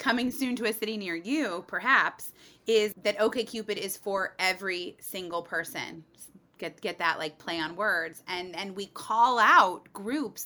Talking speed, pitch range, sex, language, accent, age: 165 wpm, 180-245 Hz, female, English, American, 30-49